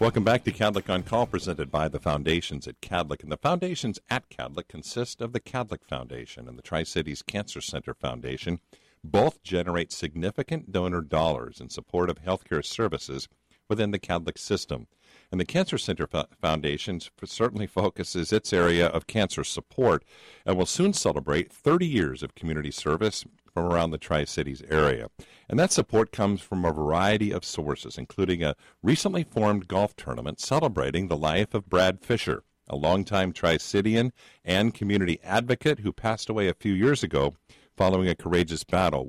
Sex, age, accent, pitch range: male, 50-69, American, 80-110 Hz